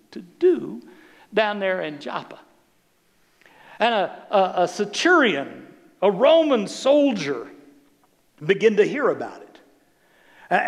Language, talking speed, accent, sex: English, 110 wpm, American, male